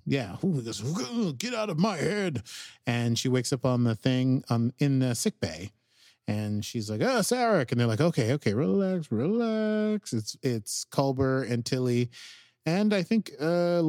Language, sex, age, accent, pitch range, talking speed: English, male, 30-49, American, 105-135 Hz, 170 wpm